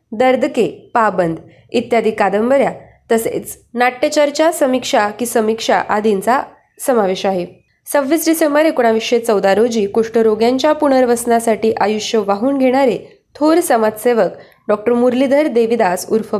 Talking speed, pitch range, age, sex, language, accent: 100 wpm, 205-260 Hz, 20-39, female, Marathi, native